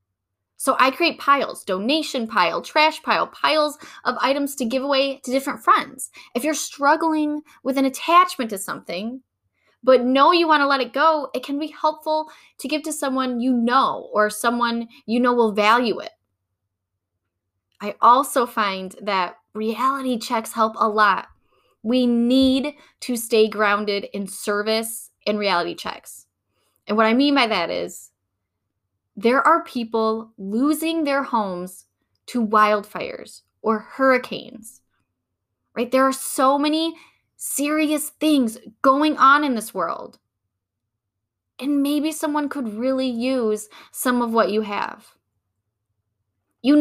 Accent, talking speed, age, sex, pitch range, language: American, 140 wpm, 10-29, female, 195-280 Hz, English